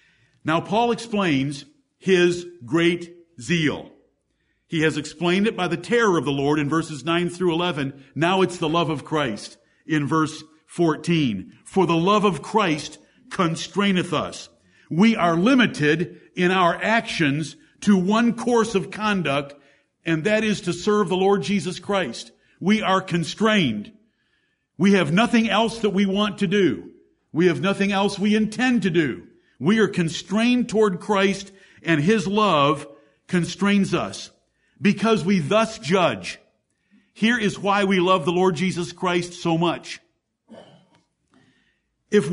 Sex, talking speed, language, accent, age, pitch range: male, 145 wpm, English, American, 50-69, 165-205 Hz